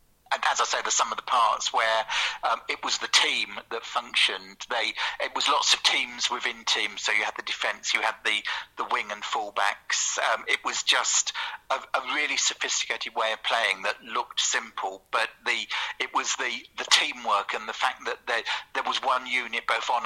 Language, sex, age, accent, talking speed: English, male, 50-69, British, 210 wpm